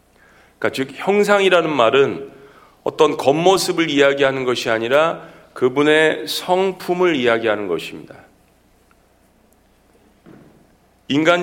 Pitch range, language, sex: 140-170 Hz, Korean, male